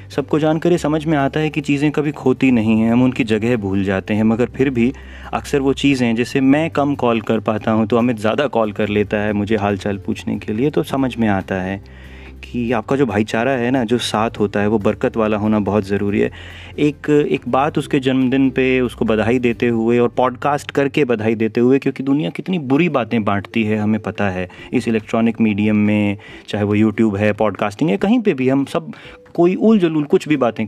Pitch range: 110-140 Hz